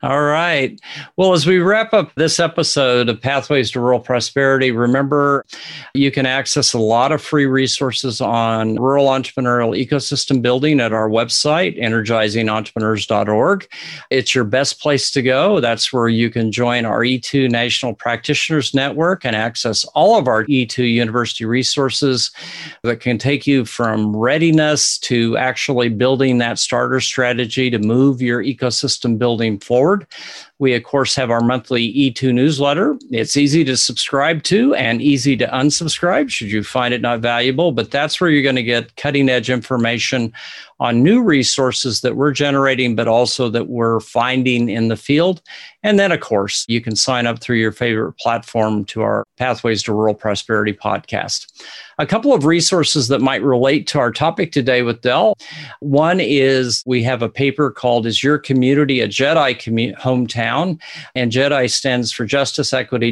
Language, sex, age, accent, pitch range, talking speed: English, male, 50-69, American, 115-140 Hz, 165 wpm